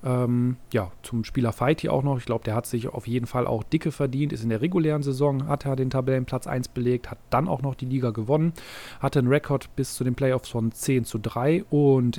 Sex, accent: male, German